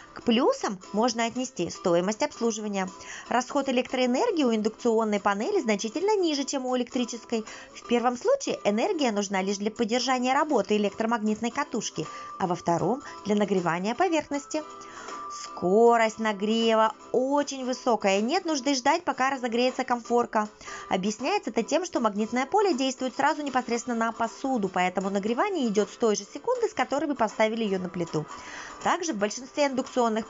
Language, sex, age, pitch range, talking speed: Russian, female, 20-39, 215-290 Hz, 145 wpm